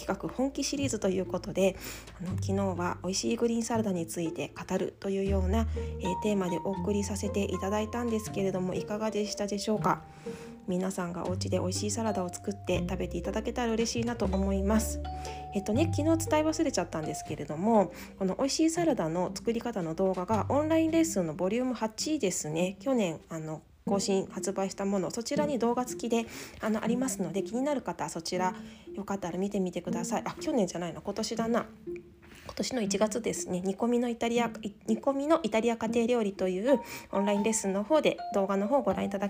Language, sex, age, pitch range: Japanese, female, 20-39, 175-235 Hz